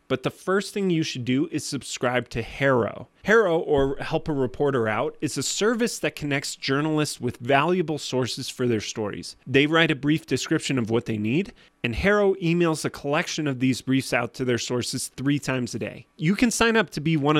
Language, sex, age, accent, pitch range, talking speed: English, male, 30-49, American, 125-170 Hz, 210 wpm